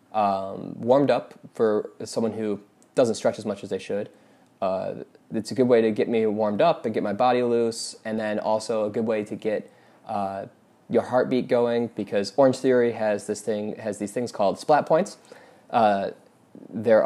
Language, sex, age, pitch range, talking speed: English, male, 20-39, 105-125 Hz, 190 wpm